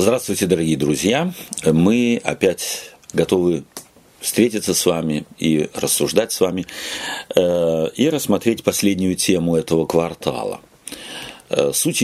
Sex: male